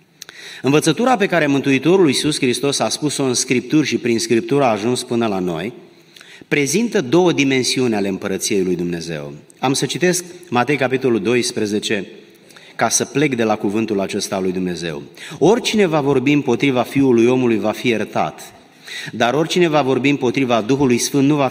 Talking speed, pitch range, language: 165 wpm, 115-150 Hz, Romanian